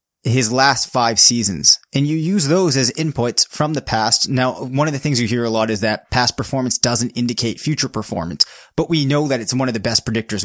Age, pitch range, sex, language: 30-49, 115-140 Hz, male, English